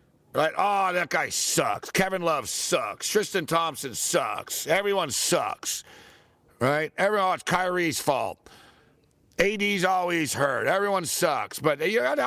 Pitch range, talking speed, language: 135-180 Hz, 135 wpm, English